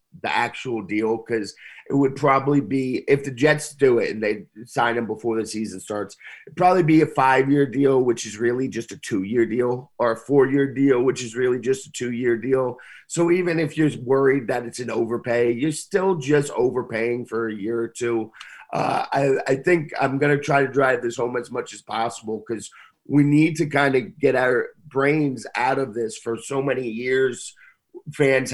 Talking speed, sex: 200 wpm, male